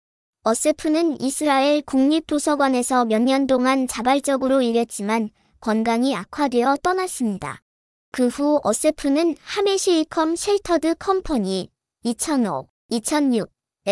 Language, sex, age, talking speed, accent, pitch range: English, male, 20-39, 70 wpm, Korean, 235-305 Hz